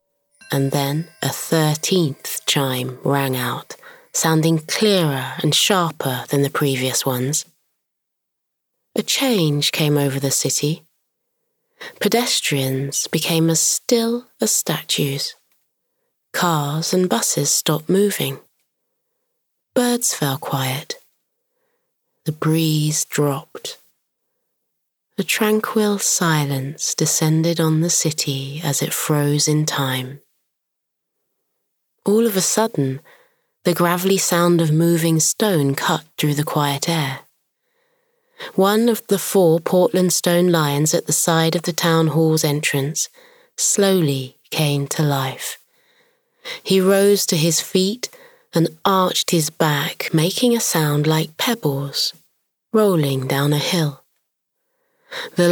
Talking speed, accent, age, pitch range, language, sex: 110 wpm, British, 20-39, 145-220 Hz, English, female